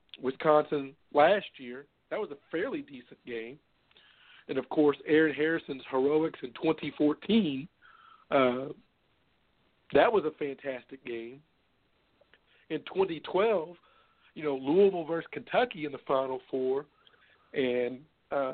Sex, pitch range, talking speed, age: male, 135-160 Hz, 115 wpm, 50-69